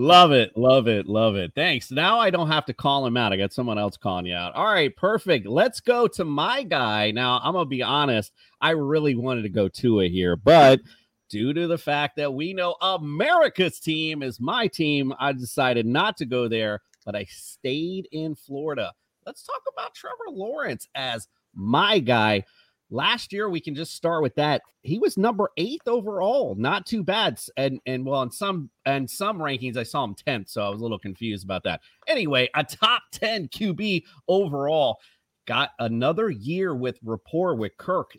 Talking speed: 195 wpm